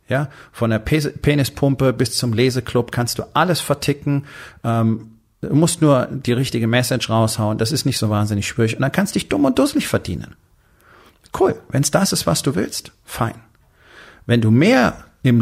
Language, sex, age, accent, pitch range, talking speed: German, male, 40-59, German, 110-130 Hz, 180 wpm